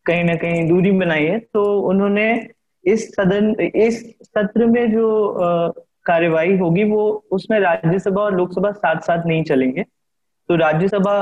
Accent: native